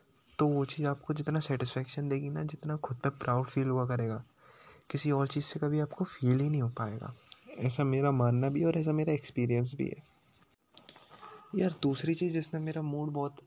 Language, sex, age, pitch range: Hindi, male, 20-39, 130-155 Hz